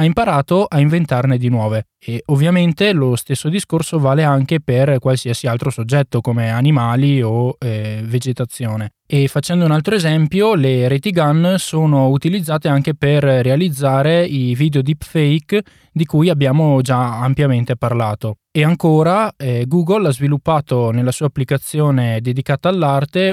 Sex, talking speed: male, 140 wpm